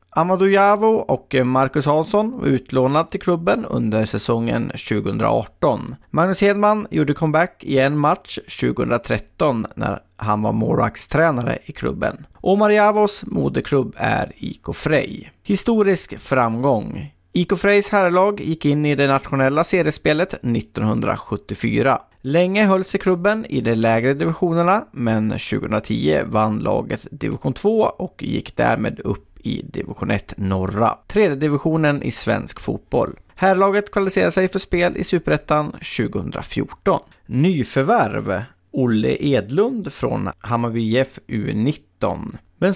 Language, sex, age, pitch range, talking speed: Swedish, male, 30-49, 115-190 Hz, 120 wpm